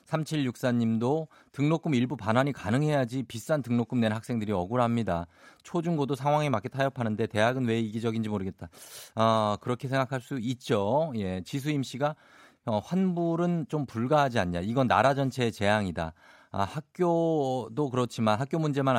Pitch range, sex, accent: 105-145 Hz, male, native